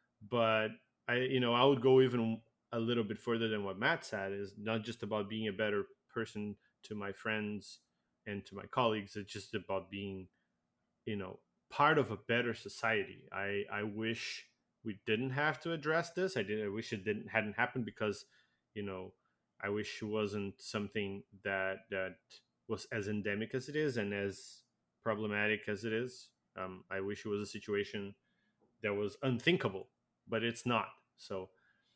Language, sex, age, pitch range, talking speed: English, male, 20-39, 100-115 Hz, 180 wpm